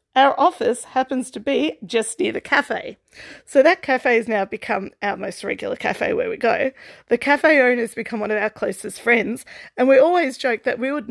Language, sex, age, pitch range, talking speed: English, female, 40-59, 220-285 Hz, 210 wpm